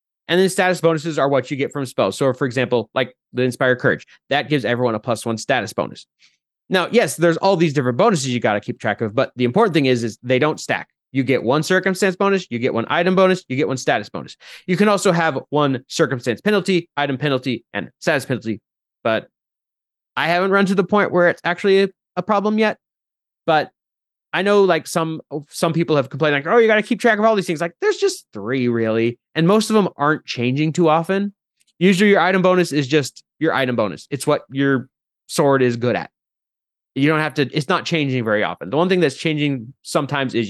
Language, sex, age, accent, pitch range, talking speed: English, male, 30-49, American, 130-180 Hz, 225 wpm